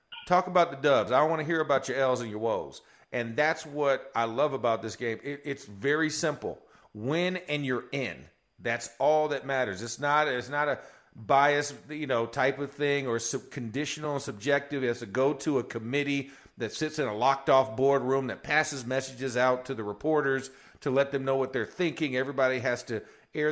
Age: 40-59